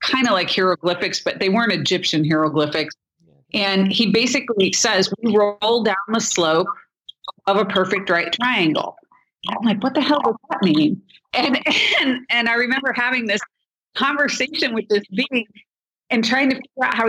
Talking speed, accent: 170 wpm, American